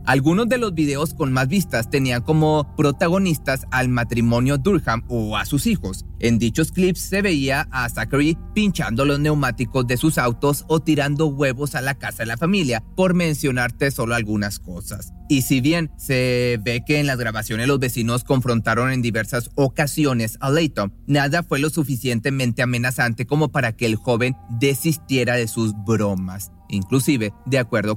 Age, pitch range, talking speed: 30-49, 115-150 Hz, 165 wpm